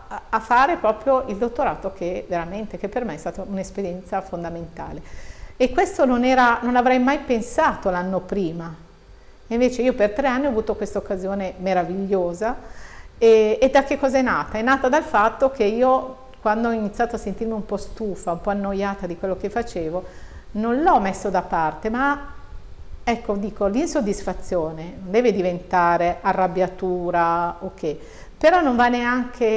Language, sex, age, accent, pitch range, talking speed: Italian, female, 50-69, native, 185-240 Hz, 160 wpm